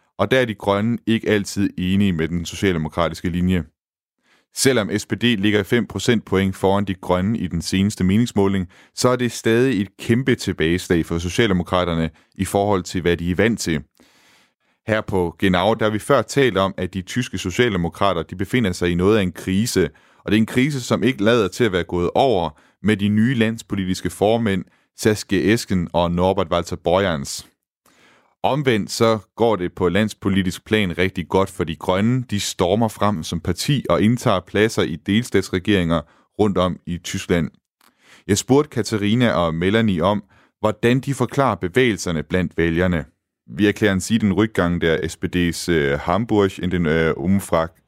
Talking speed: 170 wpm